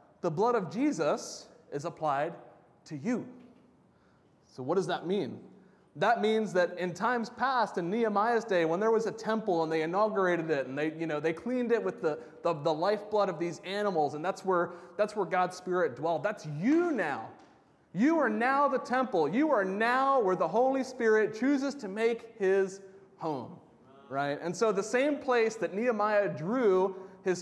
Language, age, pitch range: English, 30-49, 170-230 Hz